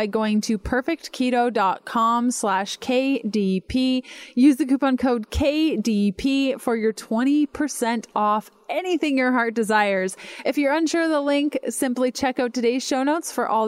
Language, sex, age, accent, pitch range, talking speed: English, female, 20-39, American, 200-275 Hz, 140 wpm